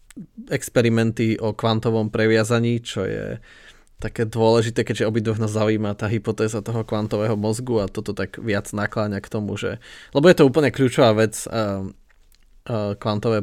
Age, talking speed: 20-39, 150 wpm